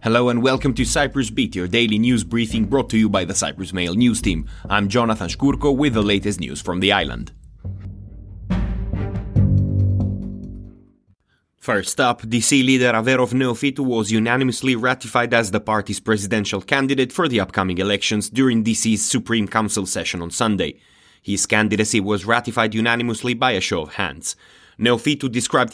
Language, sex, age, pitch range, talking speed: English, male, 30-49, 105-125 Hz, 155 wpm